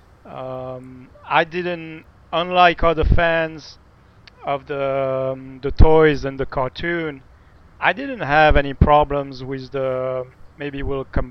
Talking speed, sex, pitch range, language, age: 125 wpm, male, 130-145 Hz, English, 30-49